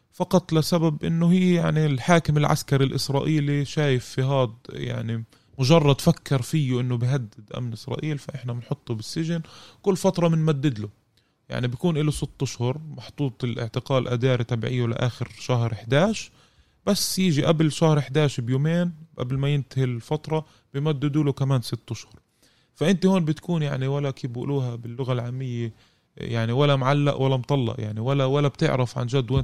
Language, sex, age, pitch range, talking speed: Arabic, male, 20-39, 120-155 Hz, 150 wpm